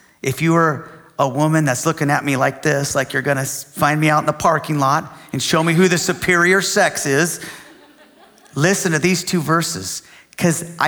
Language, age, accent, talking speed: English, 40-59, American, 200 wpm